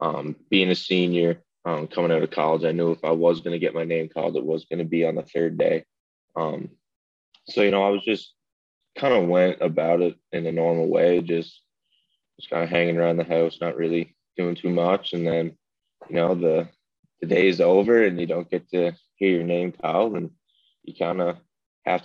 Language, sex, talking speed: English, male, 220 wpm